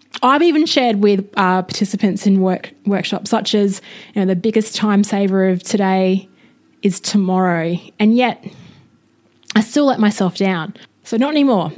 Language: English